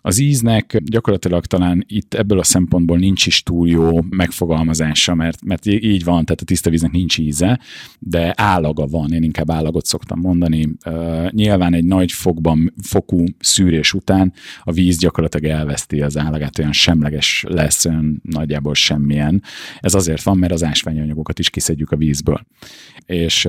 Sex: male